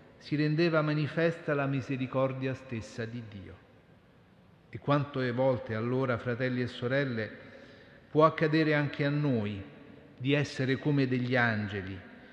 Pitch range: 120-150 Hz